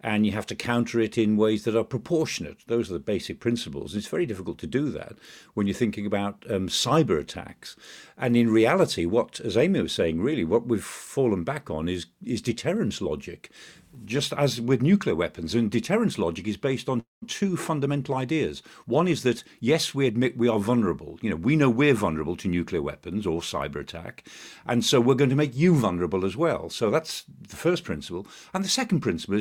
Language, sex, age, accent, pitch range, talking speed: English, male, 50-69, British, 105-140 Hz, 205 wpm